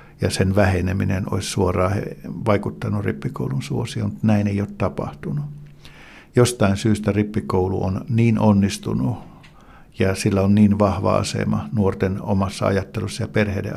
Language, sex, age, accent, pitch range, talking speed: Finnish, male, 60-79, native, 95-115 Hz, 125 wpm